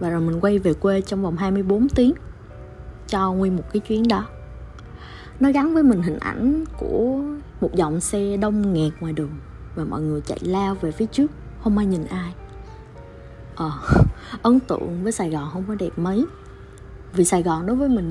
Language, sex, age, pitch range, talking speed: Vietnamese, female, 20-39, 165-230 Hz, 190 wpm